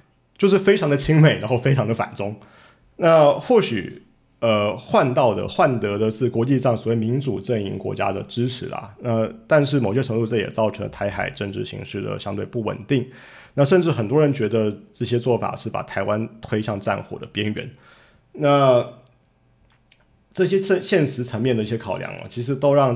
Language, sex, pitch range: Chinese, male, 110-150 Hz